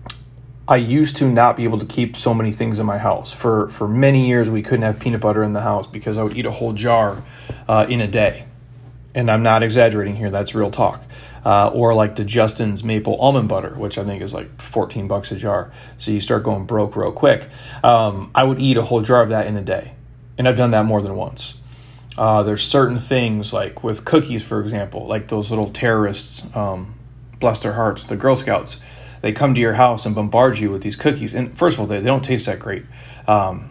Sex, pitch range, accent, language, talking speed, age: male, 105-125 Hz, American, English, 230 wpm, 30-49